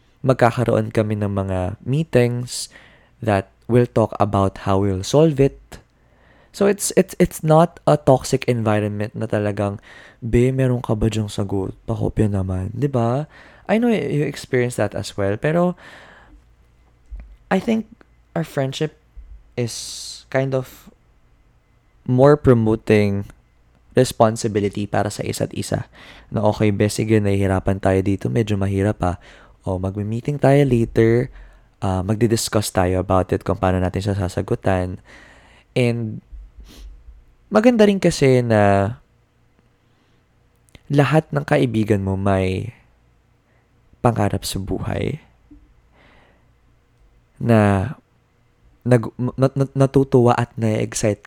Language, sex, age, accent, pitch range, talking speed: Filipino, male, 20-39, native, 95-125 Hz, 110 wpm